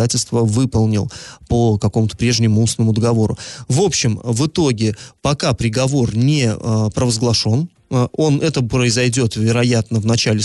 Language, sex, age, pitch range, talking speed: Russian, male, 30-49, 110-140 Hz, 120 wpm